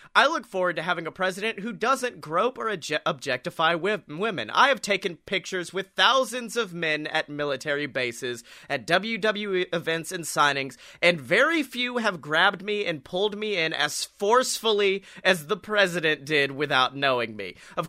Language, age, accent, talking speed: English, 30-49, American, 165 wpm